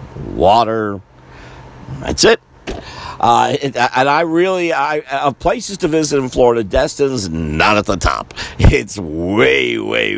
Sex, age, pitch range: male, 50-69, 80-135 Hz